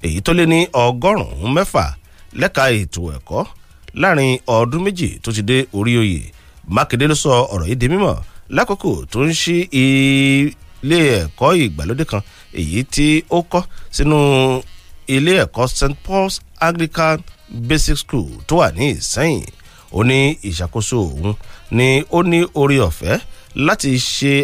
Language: English